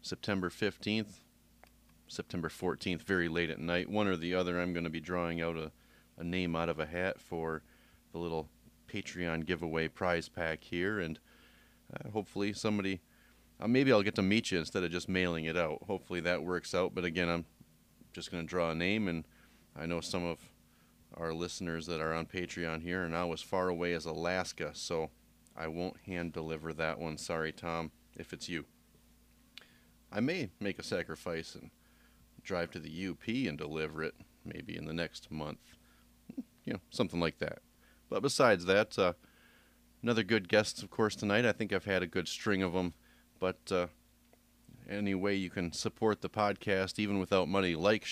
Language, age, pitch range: English, 30-49, 80-95 Hz